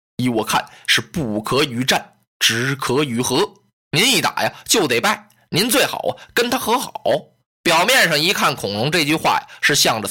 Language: Chinese